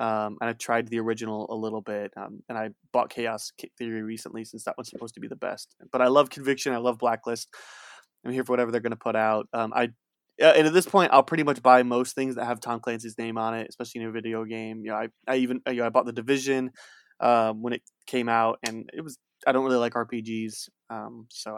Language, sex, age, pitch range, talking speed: English, male, 20-39, 115-130 Hz, 255 wpm